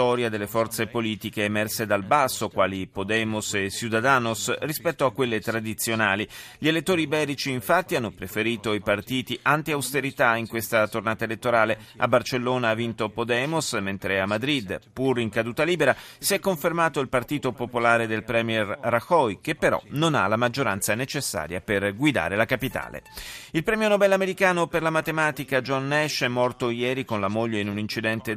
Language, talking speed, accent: Italian, 165 wpm, native